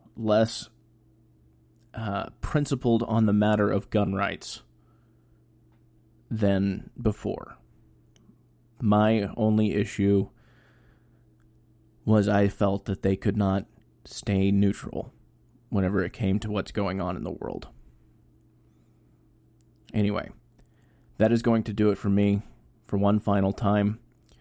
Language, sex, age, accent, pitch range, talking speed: English, male, 20-39, American, 100-115 Hz, 115 wpm